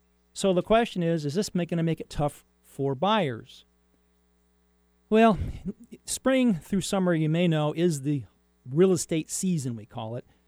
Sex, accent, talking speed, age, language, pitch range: male, American, 160 wpm, 40-59, English, 120-175 Hz